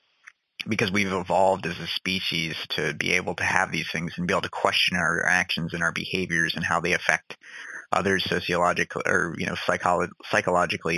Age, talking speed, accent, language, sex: 30-49, 185 wpm, American, English, male